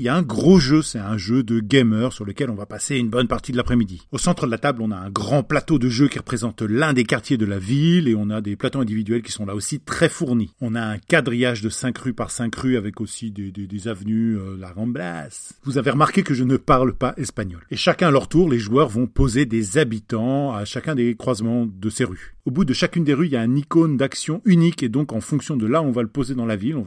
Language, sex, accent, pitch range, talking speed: French, male, French, 110-140 Hz, 280 wpm